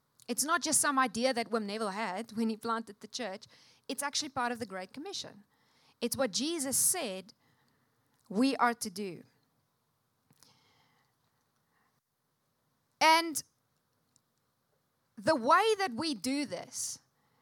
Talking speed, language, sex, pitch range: 125 wpm, English, female, 220-280 Hz